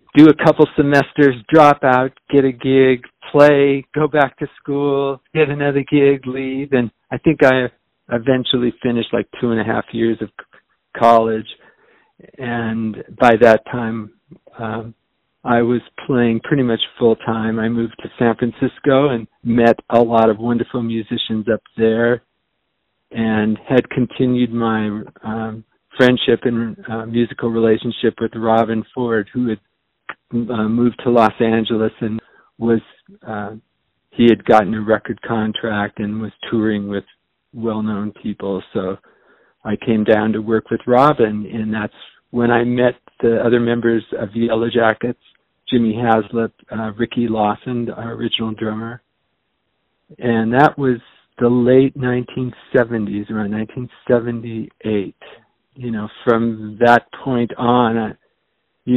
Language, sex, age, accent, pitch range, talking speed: English, male, 50-69, American, 110-125 Hz, 130 wpm